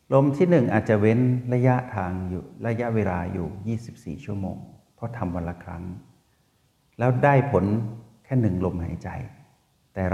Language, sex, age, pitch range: Thai, male, 60-79, 100-130 Hz